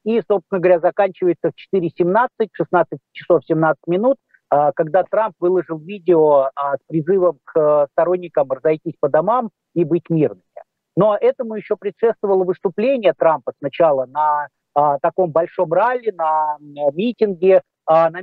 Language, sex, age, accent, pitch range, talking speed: Russian, male, 50-69, native, 170-210 Hz, 120 wpm